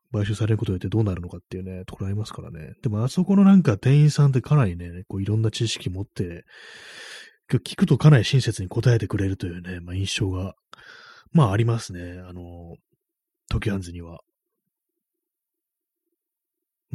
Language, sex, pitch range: Japanese, male, 95-145 Hz